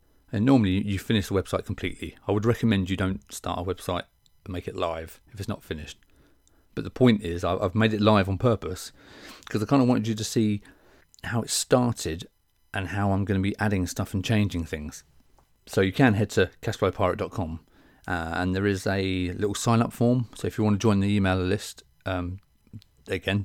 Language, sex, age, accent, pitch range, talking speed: English, male, 30-49, British, 90-110 Hz, 200 wpm